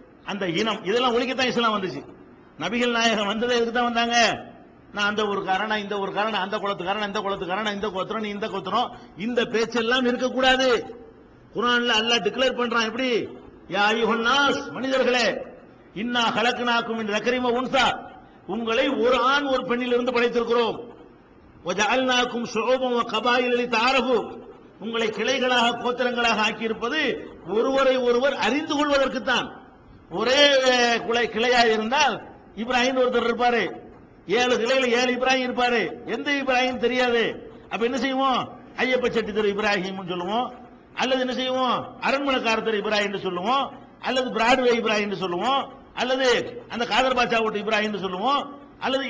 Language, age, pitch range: Tamil, 50-69, 220-255 Hz